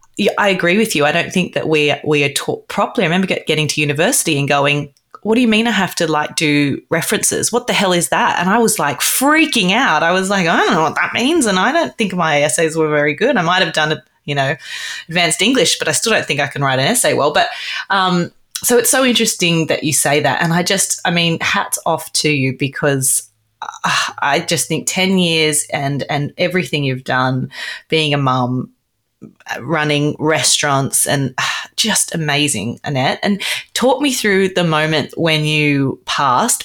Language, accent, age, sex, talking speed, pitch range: English, Australian, 30-49, female, 210 wpm, 140-185 Hz